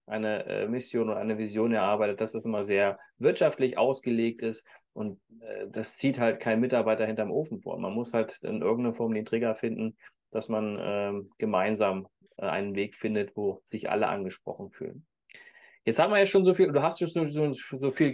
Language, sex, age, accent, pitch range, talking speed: German, male, 30-49, German, 115-160 Hz, 185 wpm